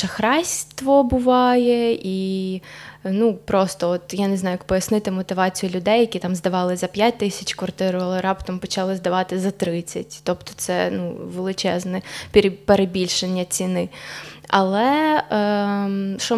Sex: female